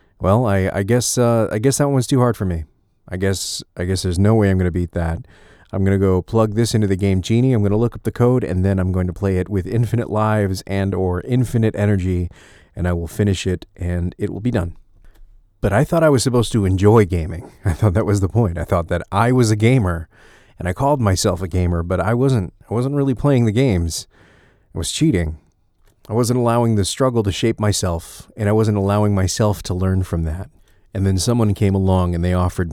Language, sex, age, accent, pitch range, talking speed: English, male, 30-49, American, 90-110 Hz, 240 wpm